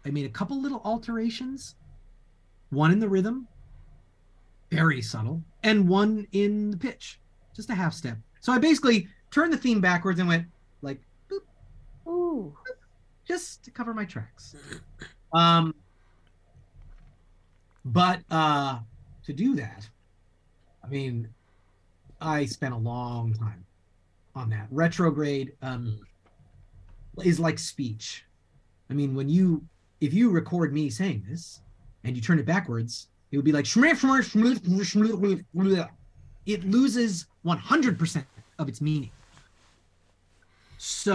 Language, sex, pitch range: English, male, 110-185 Hz